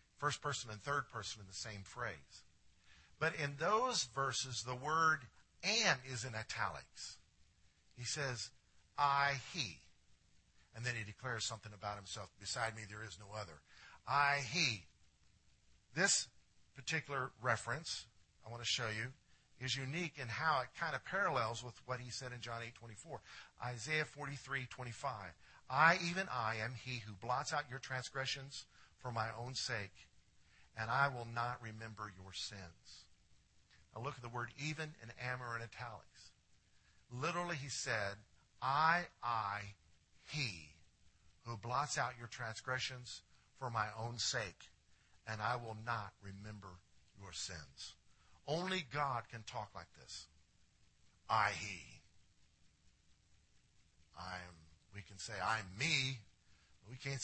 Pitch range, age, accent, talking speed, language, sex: 100-130 Hz, 50-69, American, 145 wpm, English, male